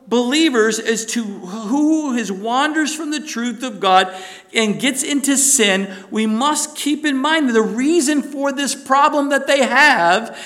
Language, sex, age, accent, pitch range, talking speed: English, male, 50-69, American, 225-275 Hz, 165 wpm